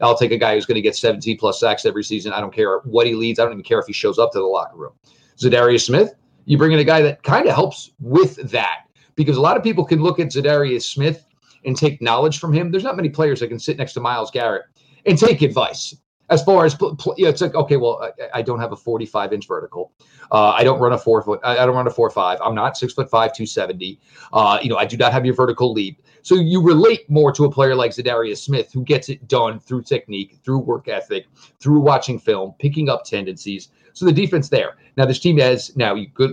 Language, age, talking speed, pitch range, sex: English, 40-59, 255 wpm, 120-155 Hz, male